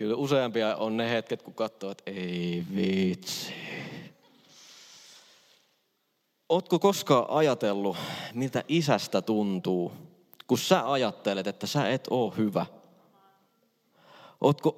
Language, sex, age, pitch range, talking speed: Finnish, male, 20-39, 110-155 Hz, 100 wpm